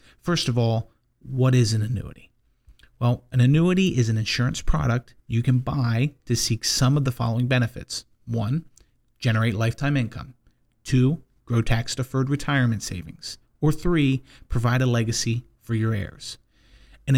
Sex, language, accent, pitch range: male, English, American, 115-140 Hz